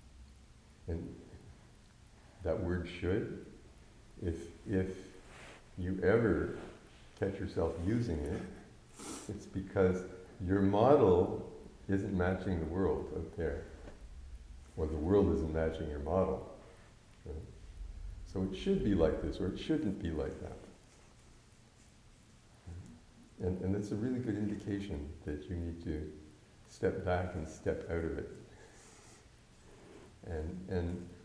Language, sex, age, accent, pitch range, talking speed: English, male, 60-79, American, 85-105 Hz, 120 wpm